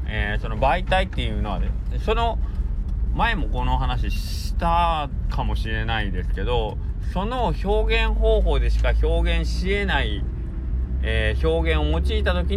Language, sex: Japanese, male